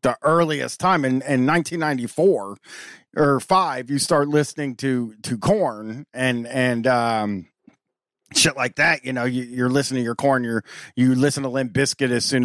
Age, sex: 30-49, male